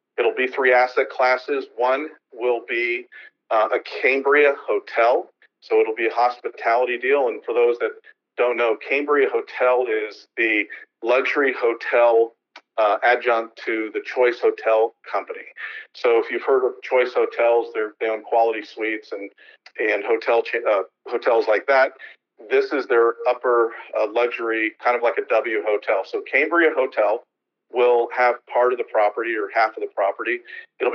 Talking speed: 165 wpm